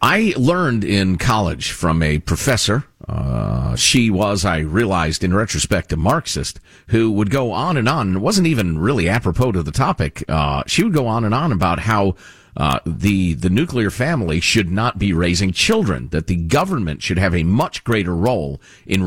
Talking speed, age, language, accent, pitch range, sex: 185 wpm, 50-69, English, American, 90-130 Hz, male